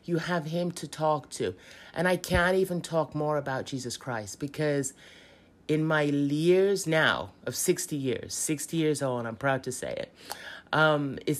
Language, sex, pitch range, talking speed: English, male, 130-170 Hz, 180 wpm